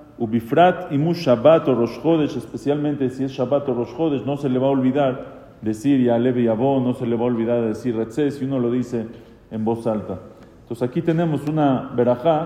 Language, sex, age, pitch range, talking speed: English, male, 40-59, 120-150 Hz, 205 wpm